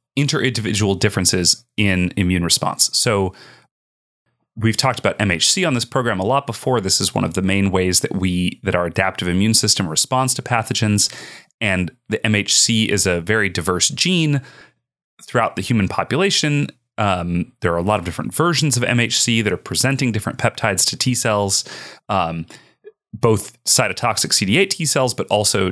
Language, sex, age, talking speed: English, male, 30-49, 170 wpm